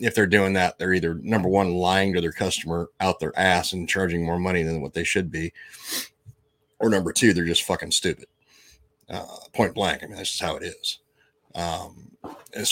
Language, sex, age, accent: English, male, 30-49, American